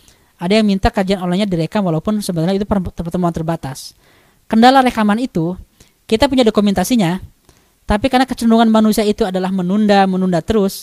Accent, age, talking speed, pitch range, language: native, 20-39, 145 wpm, 175-220 Hz, Indonesian